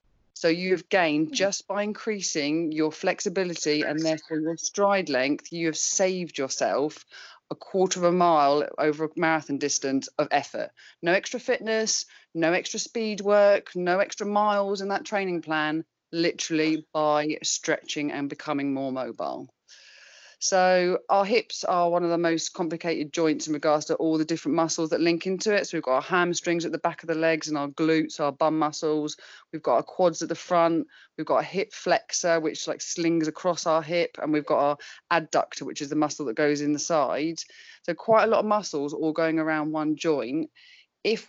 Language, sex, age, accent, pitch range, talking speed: English, female, 30-49, British, 155-195 Hz, 190 wpm